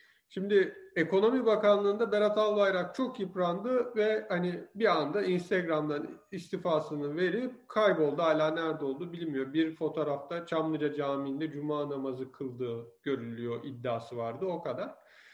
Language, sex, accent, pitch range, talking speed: Turkish, male, native, 160-205 Hz, 120 wpm